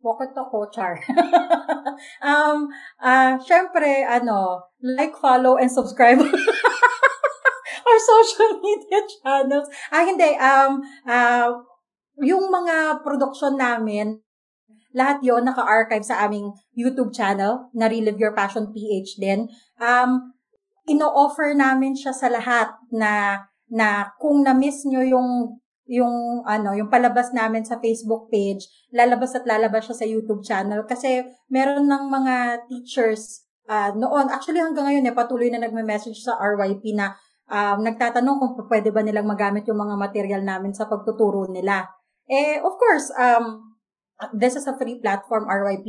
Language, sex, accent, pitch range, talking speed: Filipino, female, native, 210-270 Hz, 140 wpm